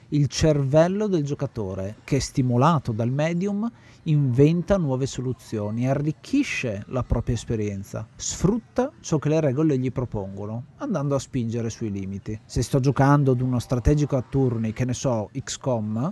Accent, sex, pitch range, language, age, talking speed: native, male, 120-155 Hz, Italian, 40-59, 150 wpm